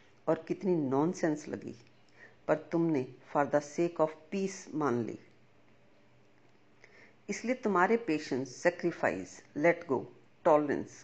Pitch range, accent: 150-200 Hz, native